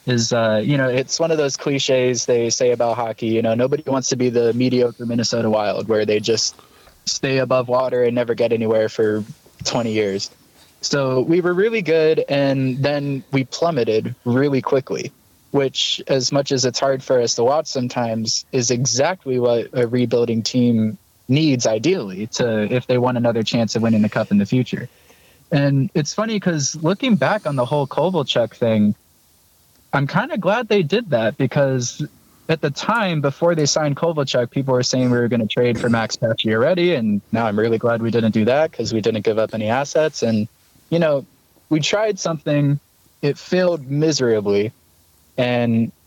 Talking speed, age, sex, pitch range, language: 185 wpm, 20-39, male, 115-145 Hz, English